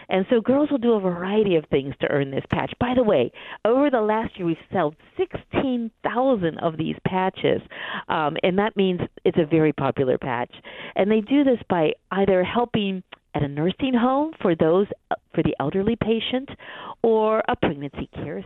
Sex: female